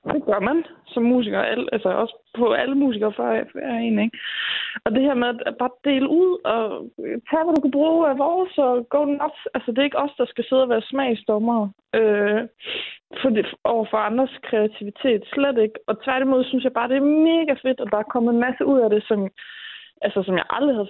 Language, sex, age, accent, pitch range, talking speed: Danish, female, 20-39, native, 215-275 Hz, 210 wpm